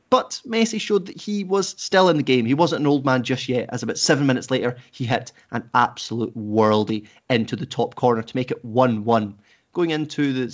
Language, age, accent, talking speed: English, 30-49, British, 215 wpm